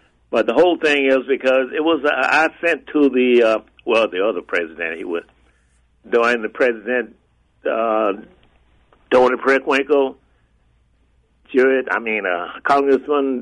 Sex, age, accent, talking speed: male, 60-79, American, 135 wpm